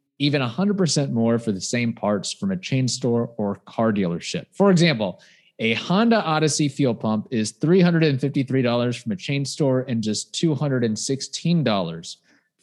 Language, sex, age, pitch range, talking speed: English, male, 30-49, 110-150 Hz, 145 wpm